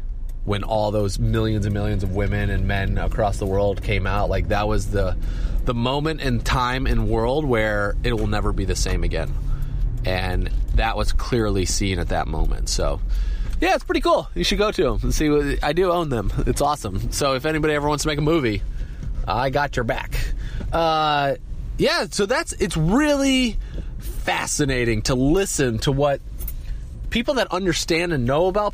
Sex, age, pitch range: male, 30-49, 100-145 Hz